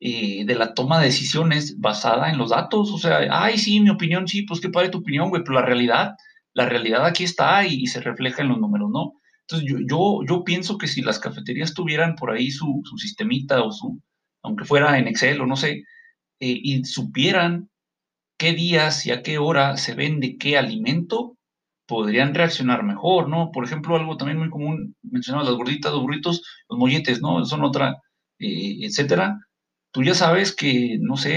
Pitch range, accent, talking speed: 135-185 Hz, Mexican, 195 wpm